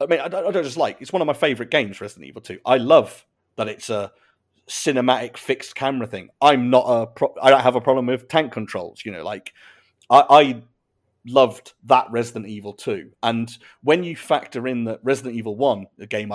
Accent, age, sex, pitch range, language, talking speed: British, 40-59, male, 110-130 Hz, English, 210 wpm